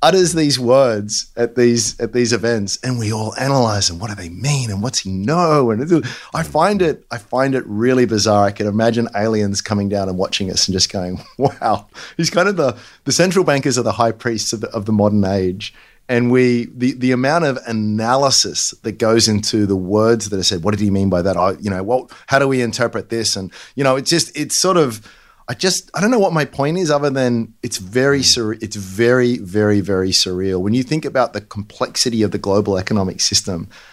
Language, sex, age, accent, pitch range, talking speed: English, male, 30-49, Australian, 105-145 Hz, 225 wpm